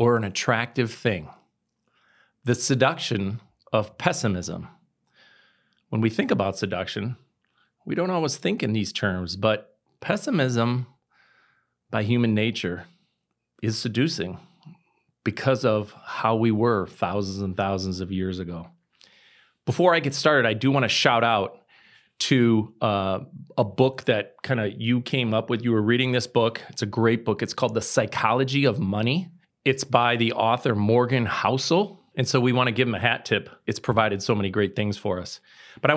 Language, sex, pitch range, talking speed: English, male, 110-135 Hz, 165 wpm